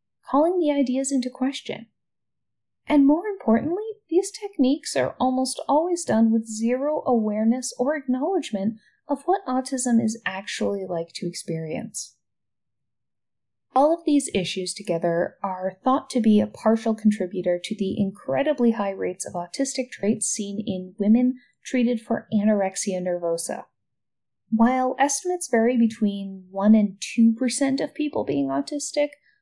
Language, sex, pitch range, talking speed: English, female, 200-265 Hz, 135 wpm